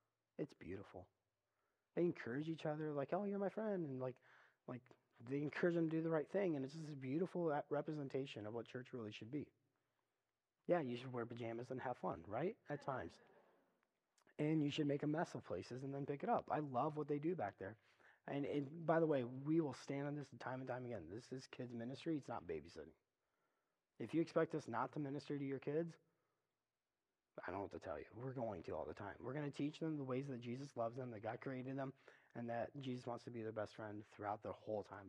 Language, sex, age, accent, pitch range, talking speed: English, male, 30-49, American, 120-150 Hz, 235 wpm